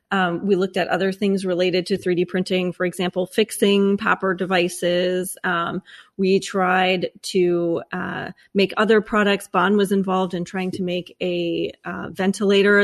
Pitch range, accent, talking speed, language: 180-205 Hz, American, 155 wpm, English